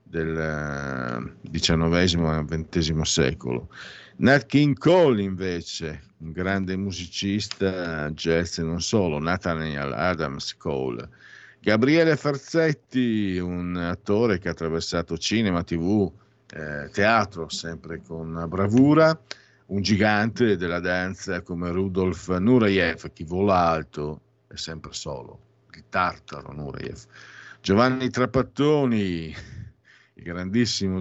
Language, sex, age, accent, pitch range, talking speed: Italian, male, 50-69, native, 80-105 Hz, 100 wpm